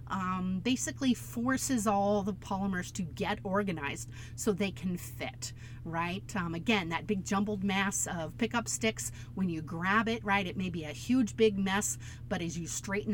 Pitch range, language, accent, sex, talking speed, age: 140-200 Hz, English, American, female, 180 wpm, 40-59